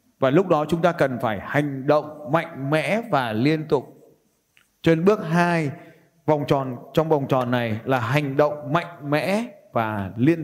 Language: Vietnamese